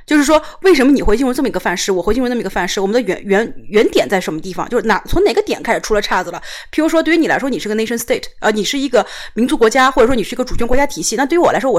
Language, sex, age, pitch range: Chinese, female, 30-49, 215-325 Hz